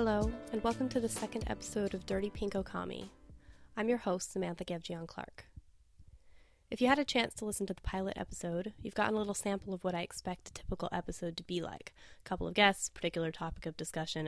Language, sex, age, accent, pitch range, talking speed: English, female, 10-29, American, 165-195 Hz, 210 wpm